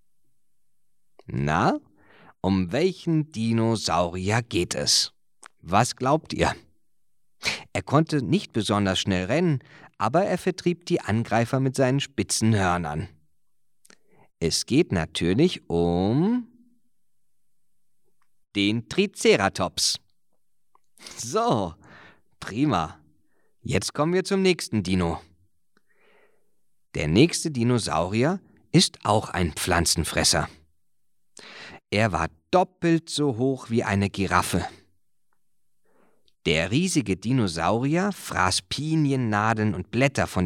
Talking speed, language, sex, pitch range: 90 wpm, German, male, 90-145 Hz